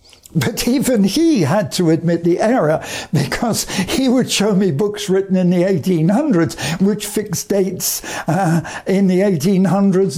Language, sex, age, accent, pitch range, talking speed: English, male, 60-79, British, 165-205 Hz, 145 wpm